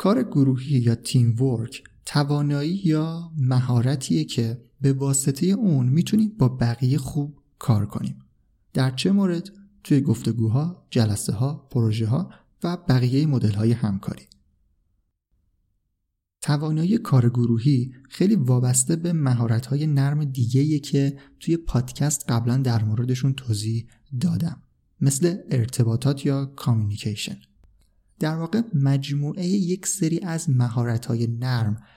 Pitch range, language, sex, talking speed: 115-155 Hz, Persian, male, 115 wpm